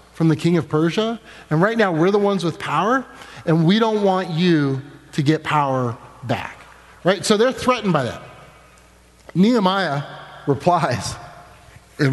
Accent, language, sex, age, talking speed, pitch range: American, English, male, 30-49, 155 wpm, 150-215 Hz